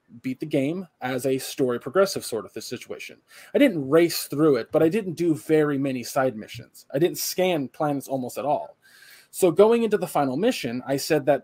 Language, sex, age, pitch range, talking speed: English, male, 20-39, 135-175 Hz, 210 wpm